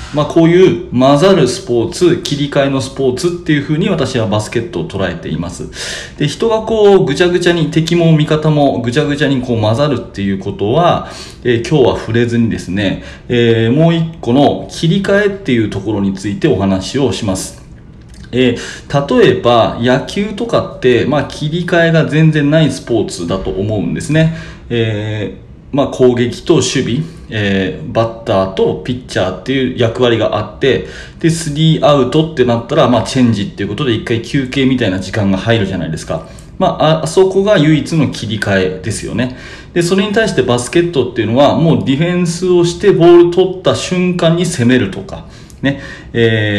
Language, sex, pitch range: Japanese, male, 115-165 Hz